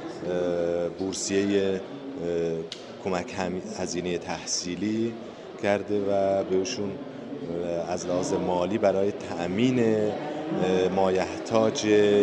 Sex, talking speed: male, 65 wpm